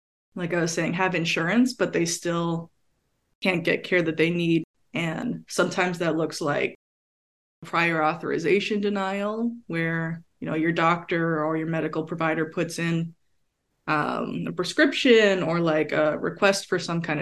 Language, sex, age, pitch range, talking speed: English, female, 20-39, 160-185 Hz, 155 wpm